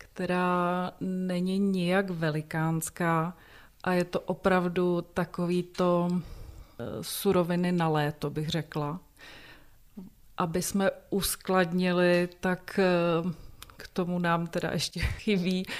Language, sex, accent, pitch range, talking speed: Czech, female, native, 165-180 Hz, 90 wpm